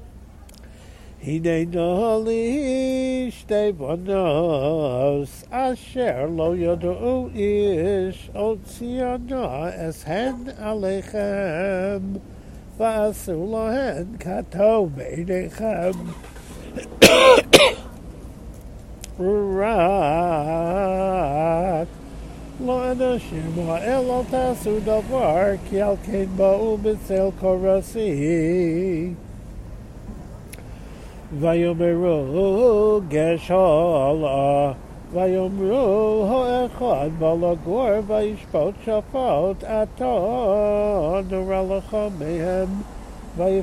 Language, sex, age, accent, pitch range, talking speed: English, male, 60-79, American, 170-215 Hz, 55 wpm